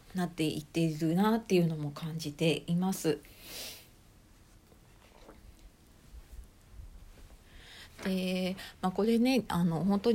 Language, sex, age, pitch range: Japanese, female, 40-59, 160-205 Hz